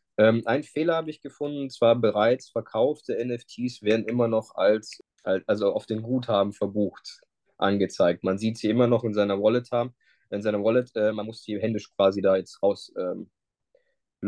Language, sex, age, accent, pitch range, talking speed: German, male, 20-39, German, 105-130 Hz, 175 wpm